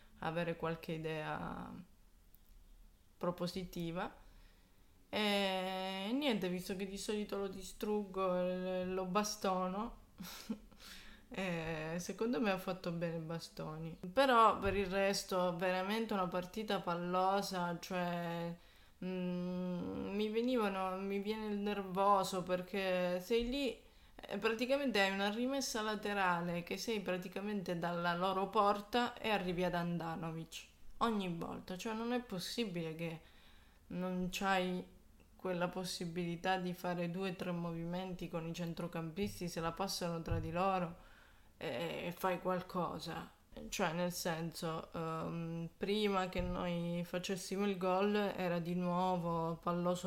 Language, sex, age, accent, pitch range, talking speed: Italian, female, 20-39, native, 170-195 Hz, 115 wpm